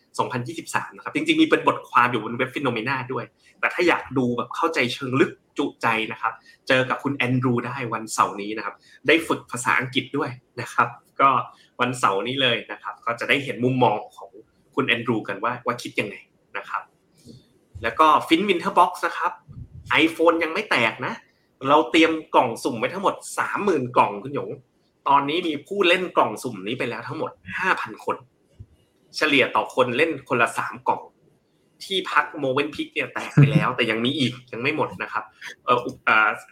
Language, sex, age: Thai, male, 30-49